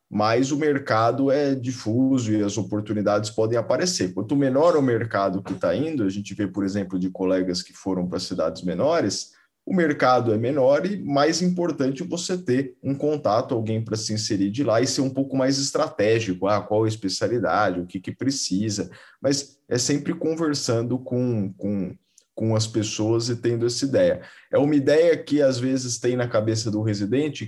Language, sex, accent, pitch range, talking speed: Portuguese, male, Brazilian, 105-135 Hz, 185 wpm